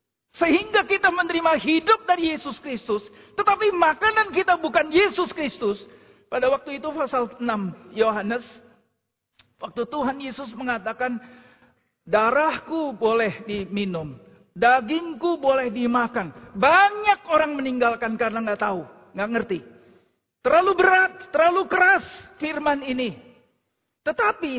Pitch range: 220-295 Hz